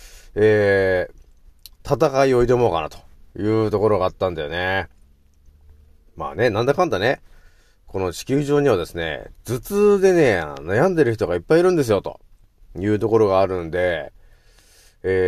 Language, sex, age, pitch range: Japanese, male, 40-59, 85-135 Hz